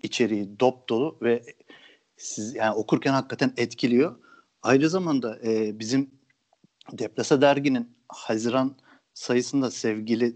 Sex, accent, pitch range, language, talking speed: male, native, 115-135 Hz, Turkish, 105 wpm